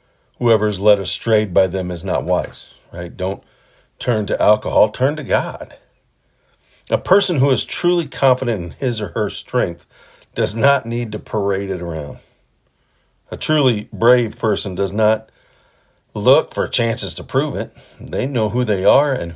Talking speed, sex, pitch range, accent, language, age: 165 wpm, male, 105-135 Hz, American, English, 50-69